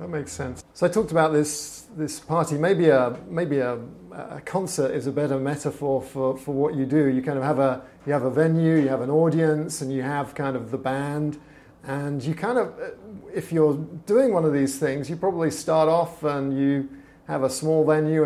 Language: English